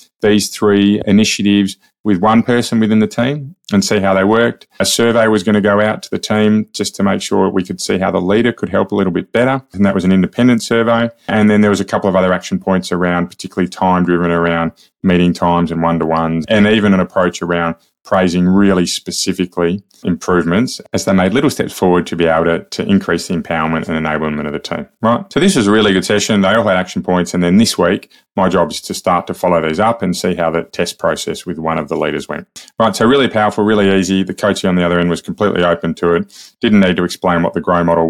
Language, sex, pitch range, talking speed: English, male, 85-110 Hz, 245 wpm